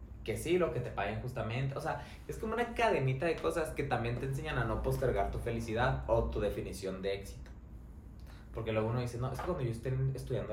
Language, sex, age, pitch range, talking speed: Spanish, male, 20-39, 100-125 Hz, 230 wpm